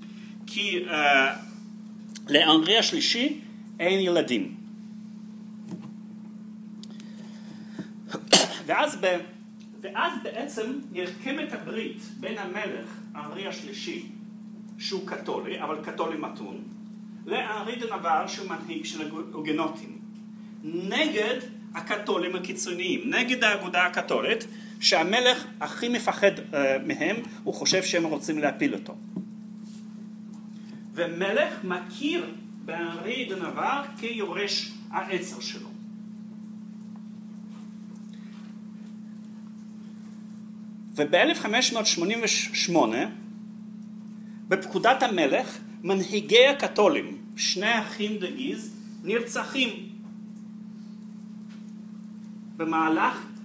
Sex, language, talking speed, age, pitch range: male, Hebrew, 70 wpm, 40-59, 200-215 Hz